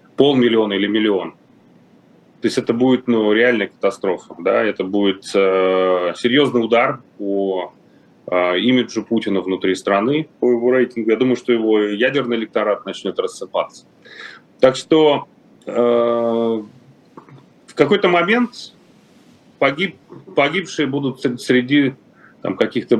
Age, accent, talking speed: 30-49, native, 110 wpm